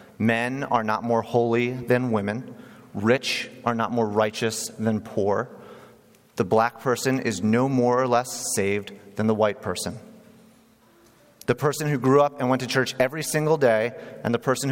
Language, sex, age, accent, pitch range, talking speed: English, male, 30-49, American, 115-145 Hz, 170 wpm